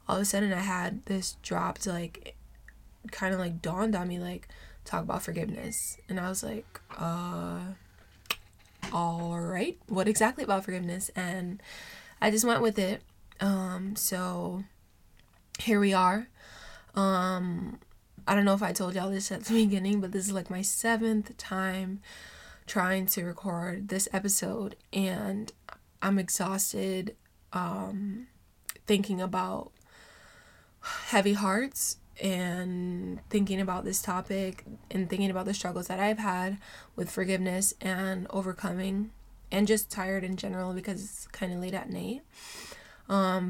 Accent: American